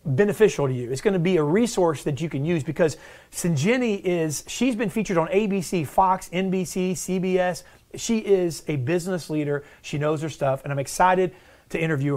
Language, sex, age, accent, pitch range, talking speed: English, male, 40-59, American, 160-205 Hz, 185 wpm